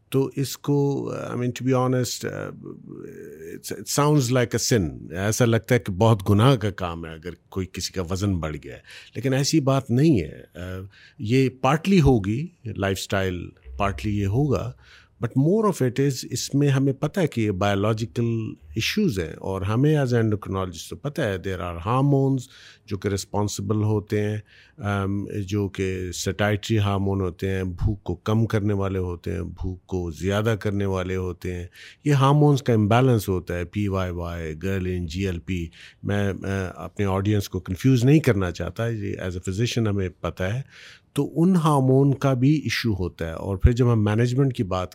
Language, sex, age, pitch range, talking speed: Urdu, male, 50-69, 95-125 Hz, 180 wpm